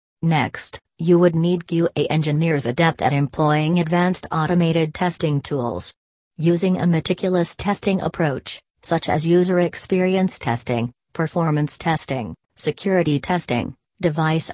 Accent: American